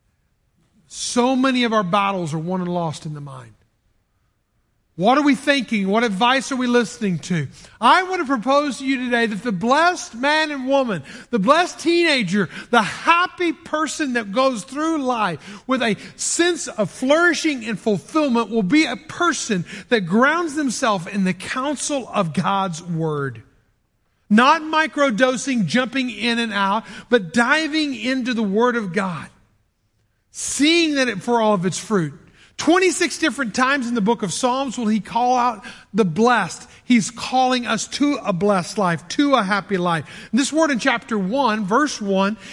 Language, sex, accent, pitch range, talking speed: English, male, American, 195-270 Hz, 165 wpm